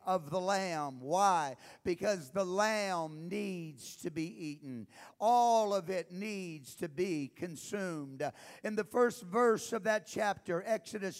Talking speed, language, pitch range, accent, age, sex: 140 wpm, English, 195-245 Hz, American, 50-69, male